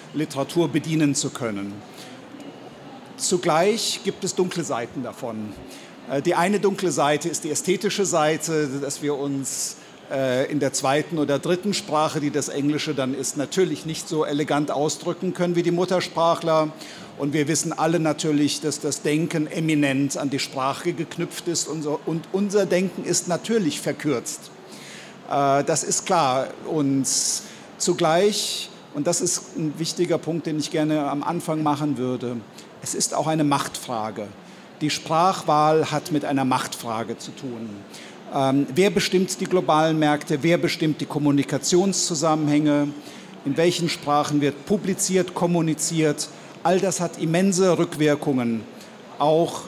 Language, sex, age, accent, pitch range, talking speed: German, male, 50-69, German, 140-170 Hz, 140 wpm